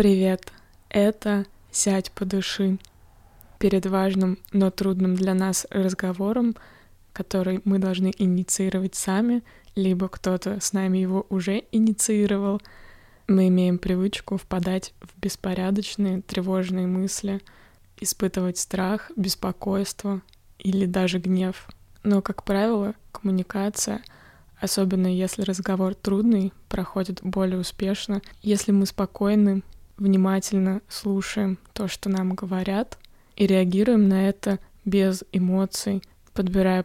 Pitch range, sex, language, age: 185-200 Hz, female, Russian, 20-39